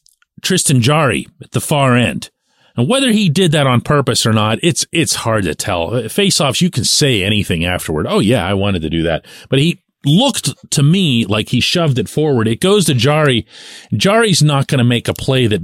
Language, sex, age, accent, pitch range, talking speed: English, male, 40-59, American, 100-145 Hz, 210 wpm